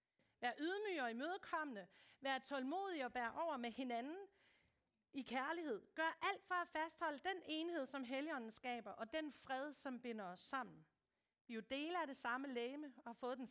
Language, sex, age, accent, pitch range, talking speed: Danish, female, 40-59, native, 235-320 Hz, 180 wpm